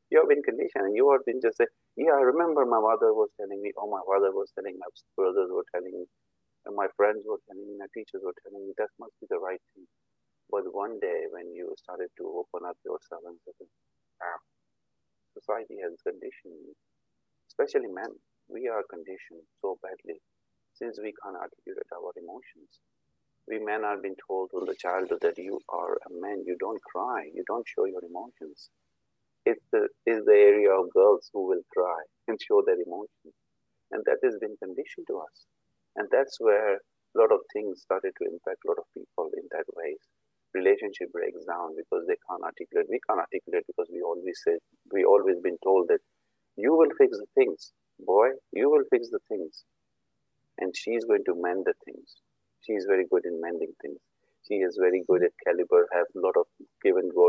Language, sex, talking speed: English, male, 200 wpm